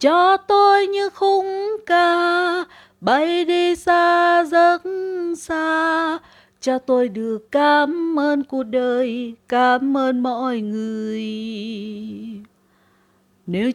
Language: Vietnamese